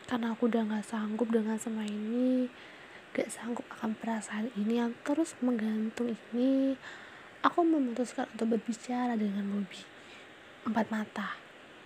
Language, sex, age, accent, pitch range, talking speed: Indonesian, female, 20-39, native, 220-250 Hz, 125 wpm